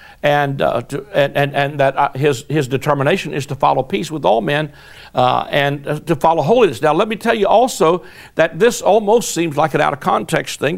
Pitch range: 140-170 Hz